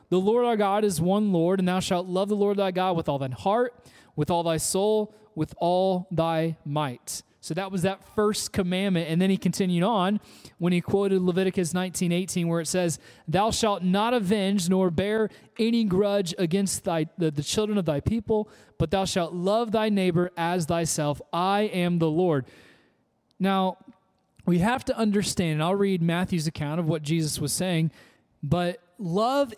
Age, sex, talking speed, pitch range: 30-49, male, 185 wpm, 165-205 Hz